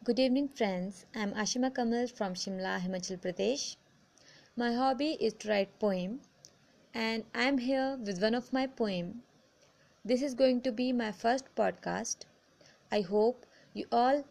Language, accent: Hindi, native